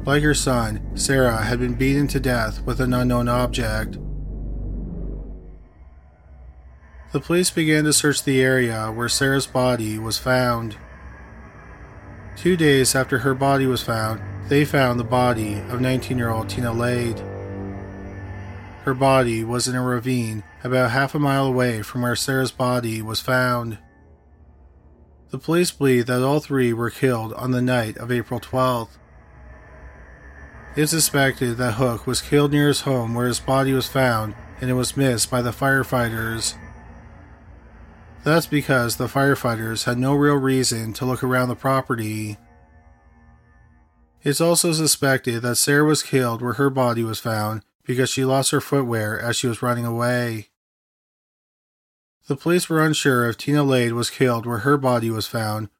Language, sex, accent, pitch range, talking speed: English, male, American, 110-135 Hz, 150 wpm